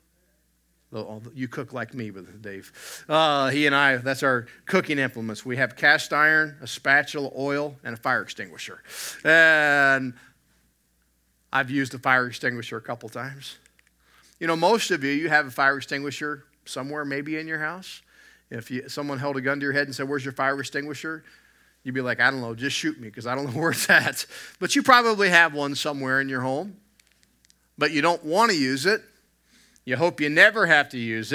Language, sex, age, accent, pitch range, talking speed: English, male, 50-69, American, 120-155 Hz, 195 wpm